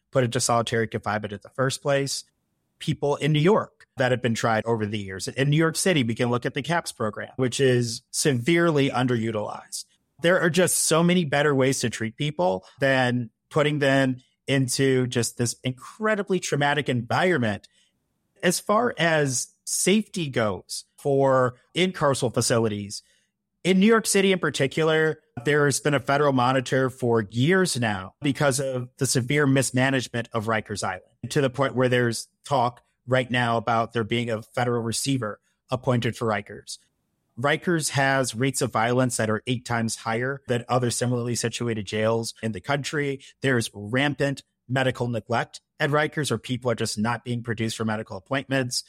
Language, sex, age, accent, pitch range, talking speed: English, male, 30-49, American, 115-145 Hz, 165 wpm